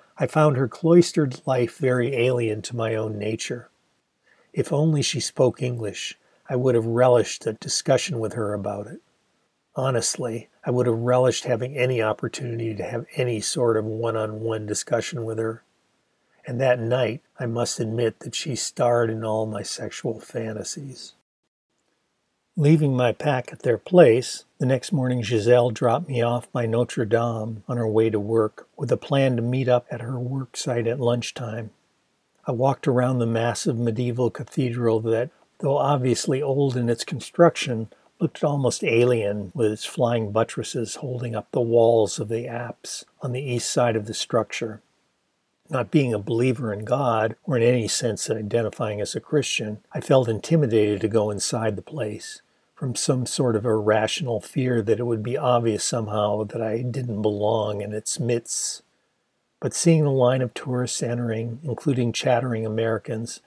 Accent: American